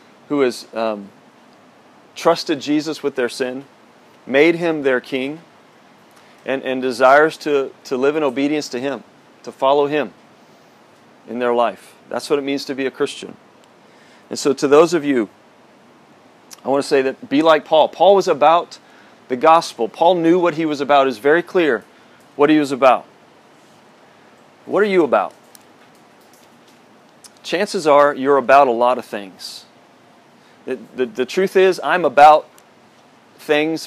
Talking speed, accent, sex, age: 155 wpm, American, male, 40-59